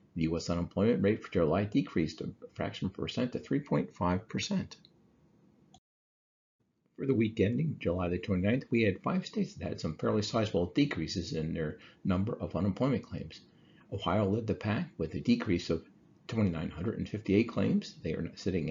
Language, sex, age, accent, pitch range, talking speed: English, male, 50-69, American, 85-105 Hz, 165 wpm